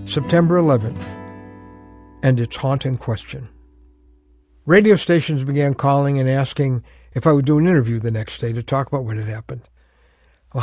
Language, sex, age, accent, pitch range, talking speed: English, male, 60-79, American, 110-165 Hz, 160 wpm